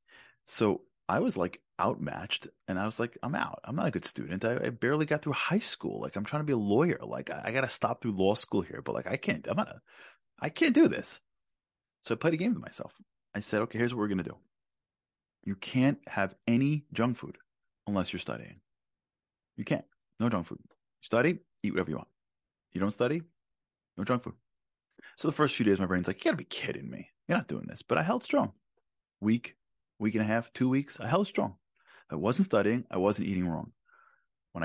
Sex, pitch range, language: male, 100-150 Hz, English